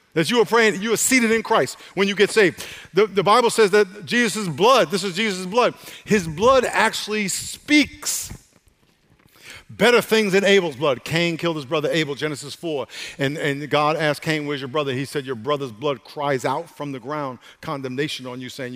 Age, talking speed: 50-69, 200 wpm